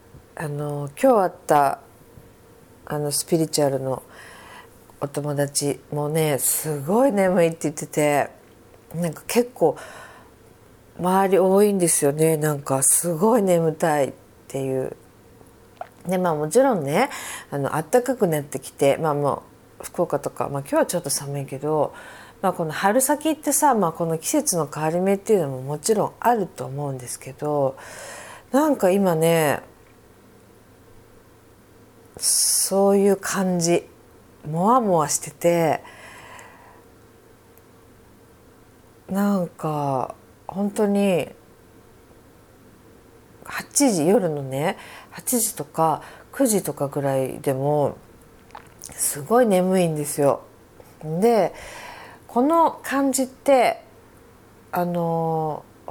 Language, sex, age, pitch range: Japanese, female, 40-59, 140-200 Hz